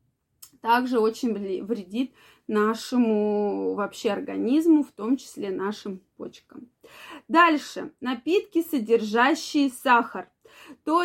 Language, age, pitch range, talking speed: Russian, 20-39, 225-290 Hz, 85 wpm